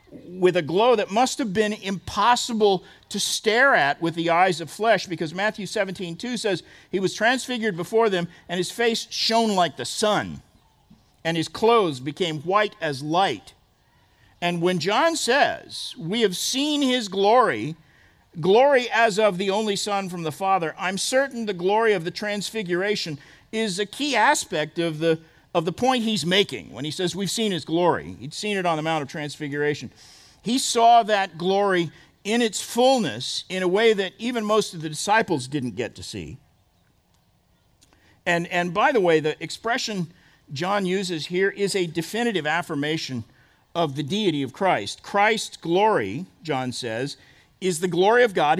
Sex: male